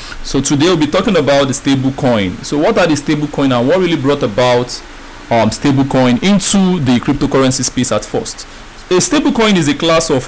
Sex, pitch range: male, 130-170 Hz